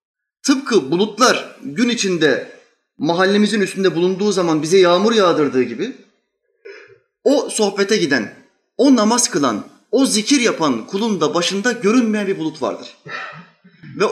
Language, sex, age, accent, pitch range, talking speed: Turkish, male, 30-49, native, 175-245 Hz, 125 wpm